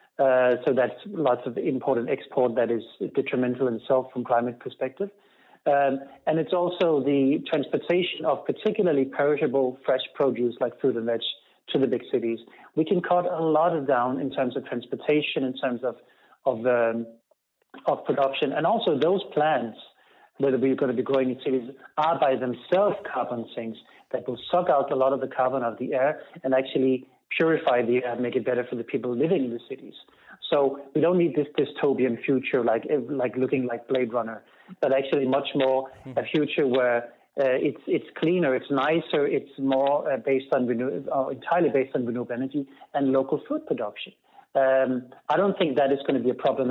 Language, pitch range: English, 125-150 Hz